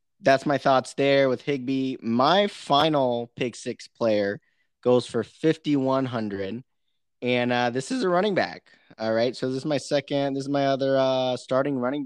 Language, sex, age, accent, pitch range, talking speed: English, male, 20-39, American, 115-140 Hz, 175 wpm